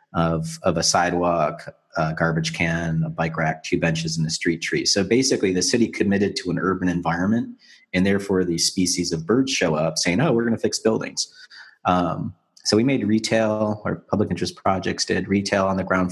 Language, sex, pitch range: English, male, 85-100 Hz